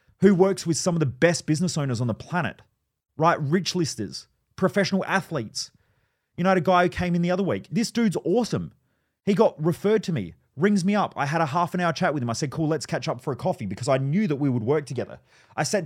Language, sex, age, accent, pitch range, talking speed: English, male, 30-49, Australian, 130-175 Hz, 255 wpm